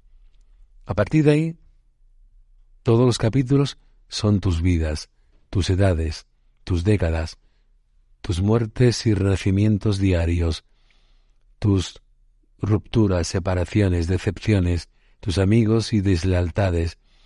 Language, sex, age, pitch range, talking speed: Spanish, male, 50-69, 90-120 Hz, 95 wpm